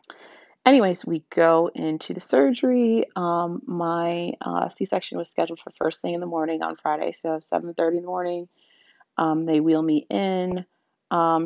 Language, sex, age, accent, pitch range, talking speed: English, female, 30-49, American, 145-175 Hz, 160 wpm